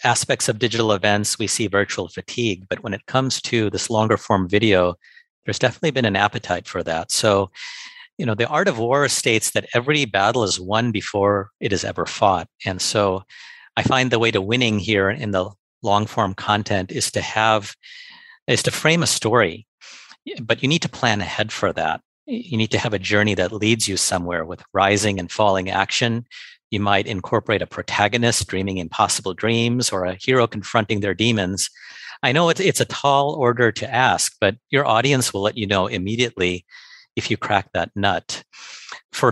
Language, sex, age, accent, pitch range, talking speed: English, male, 50-69, American, 95-120 Hz, 190 wpm